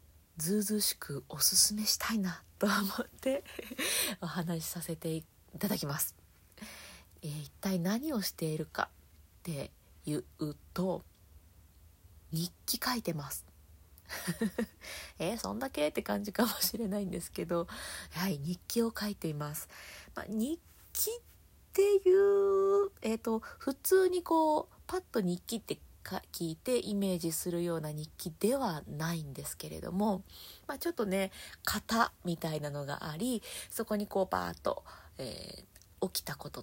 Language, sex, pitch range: Japanese, female, 155-225 Hz